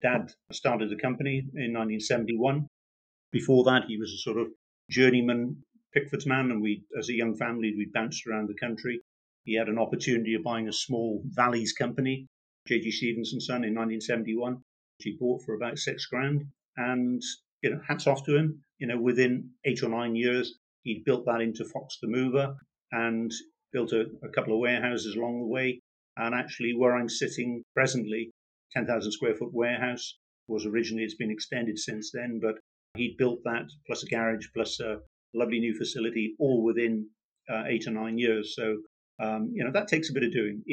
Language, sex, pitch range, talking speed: English, male, 110-130 Hz, 185 wpm